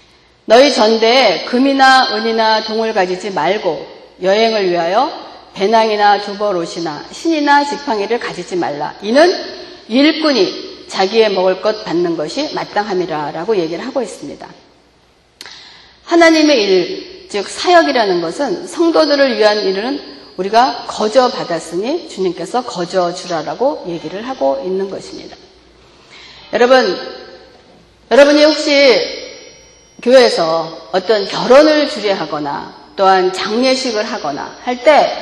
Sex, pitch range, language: female, 205-320 Hz, Korean